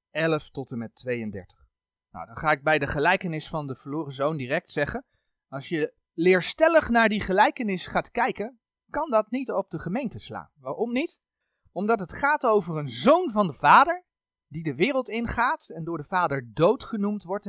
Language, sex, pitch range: Dutch, male, 125-200 Hz